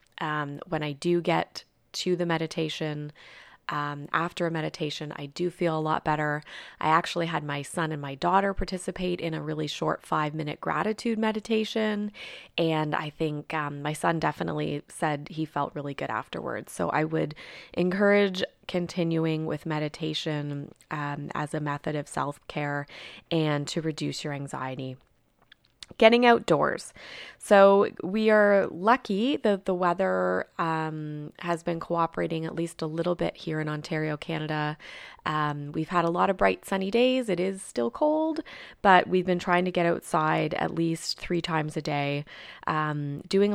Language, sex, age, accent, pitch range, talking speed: English, female, 20-39, American, 150-180 Hz, 160 wpm